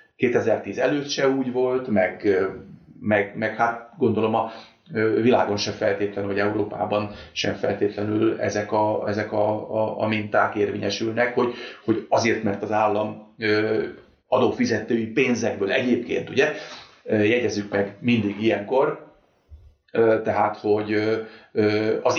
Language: Hungarian